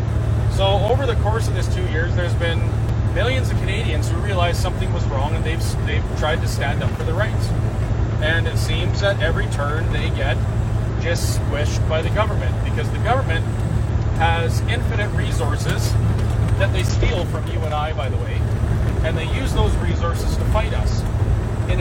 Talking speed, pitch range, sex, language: 180 wpm, 105-110 Hz, male, English